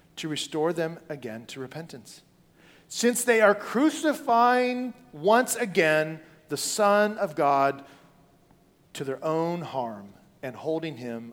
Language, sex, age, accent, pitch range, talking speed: English, male, 40-59, American, 145-210 Hz, 120 wpm